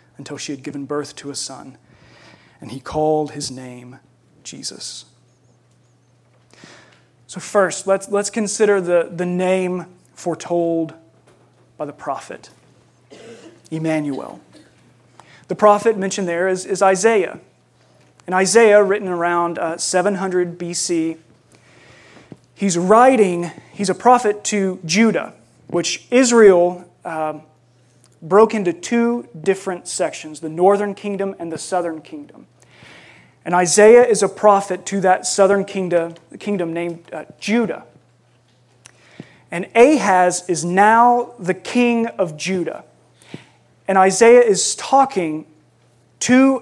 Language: English